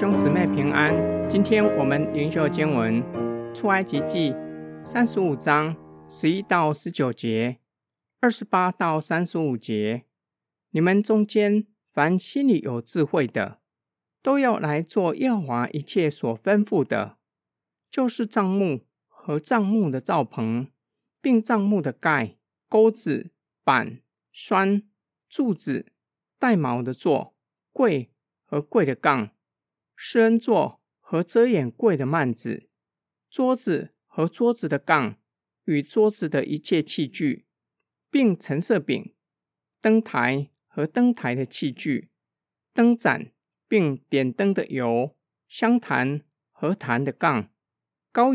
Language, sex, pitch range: Chinese, male, 135-215 Hz